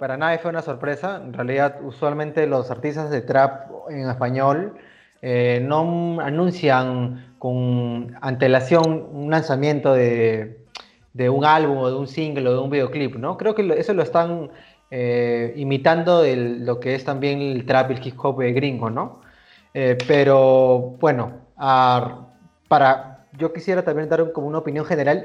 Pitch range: 125-160 Hz